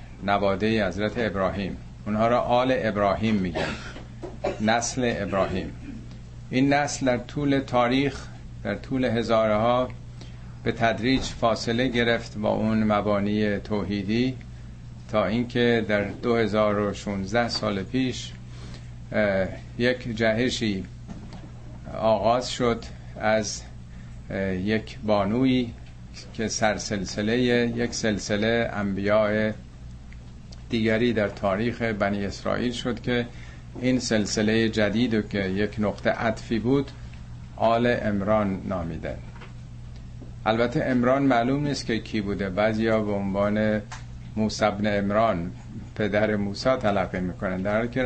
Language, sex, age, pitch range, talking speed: Persian, male, 50-69, 90-120 Hz, 105 wpm